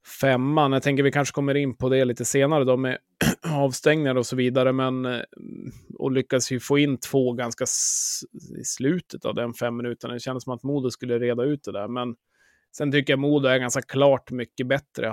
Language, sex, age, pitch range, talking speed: Swedish, male, 20-39, 120-135 Hz, 205 wpm